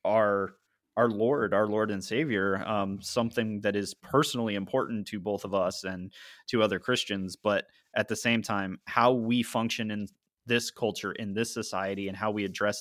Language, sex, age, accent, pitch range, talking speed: English, male, 20-39, American, 100-120 Hz, 185 wpm